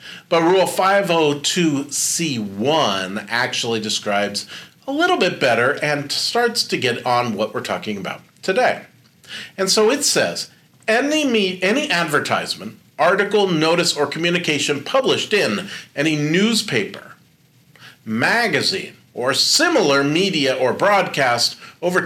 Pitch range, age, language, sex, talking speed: 130-190 Hz, 40-59, English, male, 115 wpm